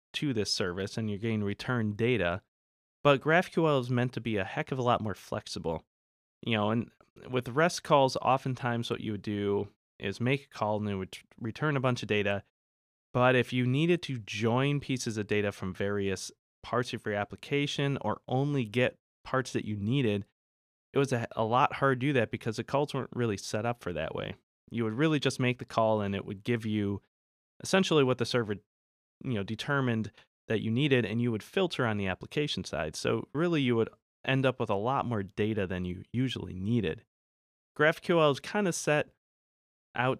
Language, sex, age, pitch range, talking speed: English, male, 20-39, 100-135 Hz, 200 wpm